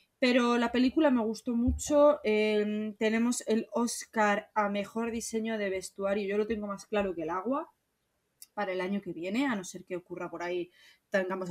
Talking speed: 190 wpm